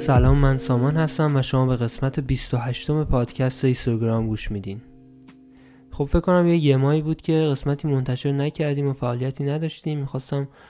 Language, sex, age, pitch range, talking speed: Persian, male, 20-39, 120-140 Hz, 155 wpm